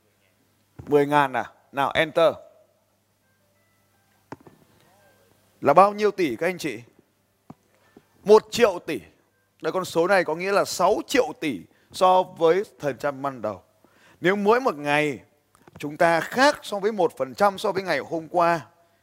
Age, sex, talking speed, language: 20-39, male, 150 wpm, Vietnamese